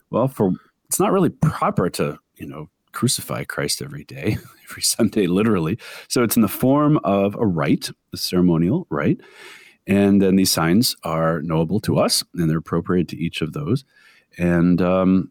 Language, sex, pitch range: English, male, 85-125 Hz